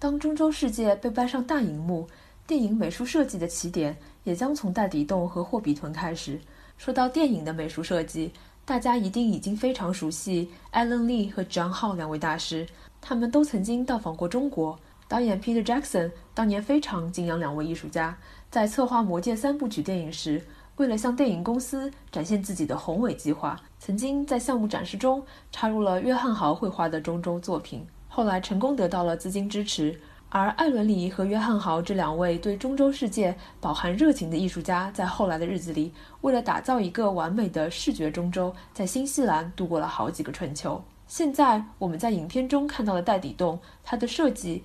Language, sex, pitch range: Chinese, female, 170-250 Hz